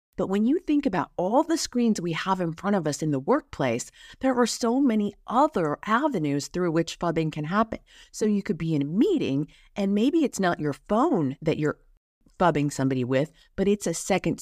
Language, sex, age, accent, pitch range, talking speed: English, female, 40-59, American, 140-200 Hz, 210 wpm